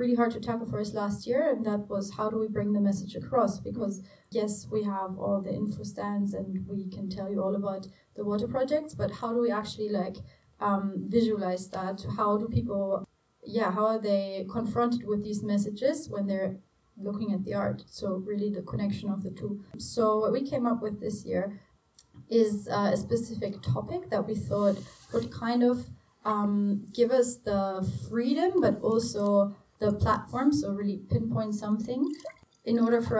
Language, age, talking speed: English, 30-49, 185 wpm